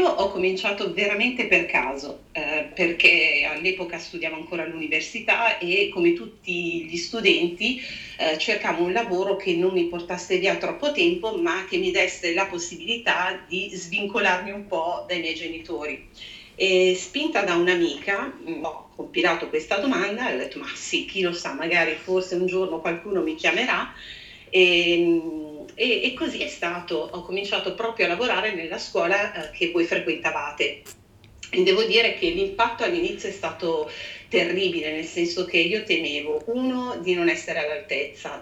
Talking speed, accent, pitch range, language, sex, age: 155 wpm, native, 170-245 Hz, Italian, female, 40-59